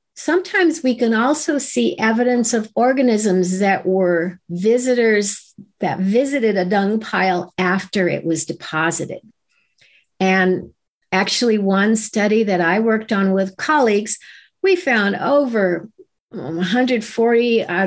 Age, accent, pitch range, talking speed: 60-79, American, 185-250 Hz, 120 wpm